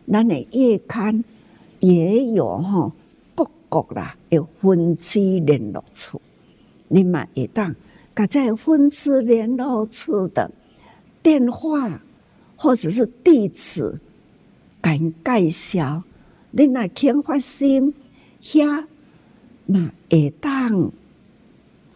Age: 60-79